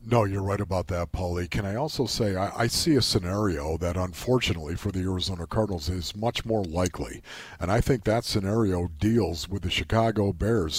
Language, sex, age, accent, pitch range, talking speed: English, male, 50-69, American, 90-120 Hz, 195 wpm